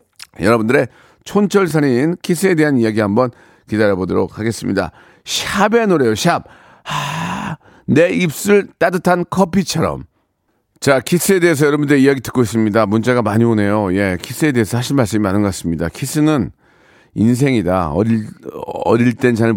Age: 40-59